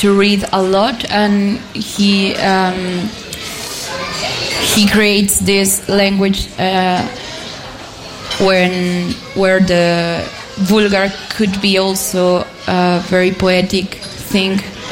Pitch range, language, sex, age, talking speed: 190-210 Hz, German, female, 20-39, 95 wpm